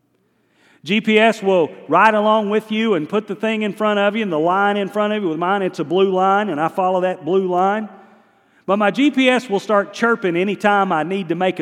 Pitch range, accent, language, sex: 165-205 Hz, American, English, male